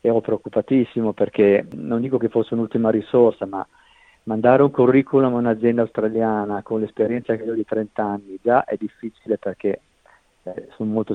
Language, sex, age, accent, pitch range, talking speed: Italian, male, 50-69, native, 100-115 Hz, 160 wpm